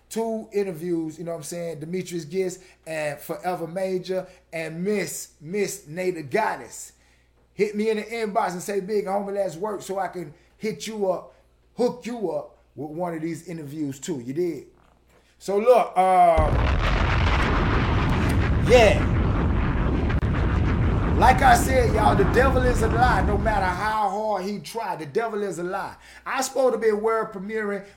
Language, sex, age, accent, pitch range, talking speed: English, male, 30-49, American, 170-225 Hz, 165 wpm